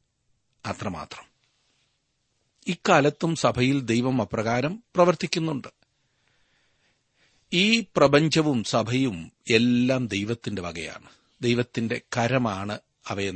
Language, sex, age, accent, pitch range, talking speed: Malayalam, male, 40-59, native, 105-140 Hz, 60 wpm